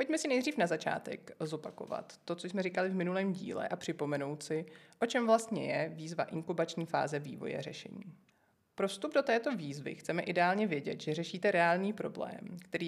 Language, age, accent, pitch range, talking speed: Czech, 30-49, native, 160-200 Hz, 175 wpm